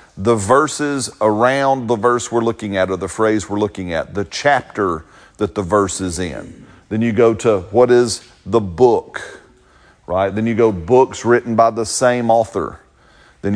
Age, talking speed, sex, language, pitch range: 40-59, 175 wpm, male, English, 105-135 Hz